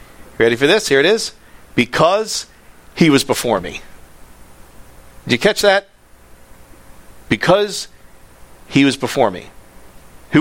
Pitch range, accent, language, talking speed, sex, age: 125-175 Hz, American, English, 120 wpm, male, 50-69